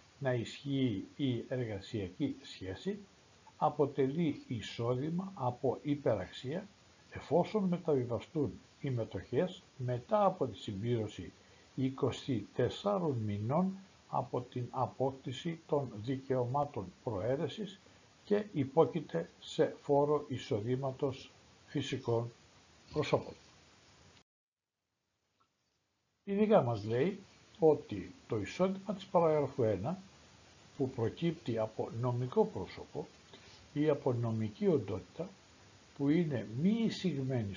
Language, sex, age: Greek, male, 60-79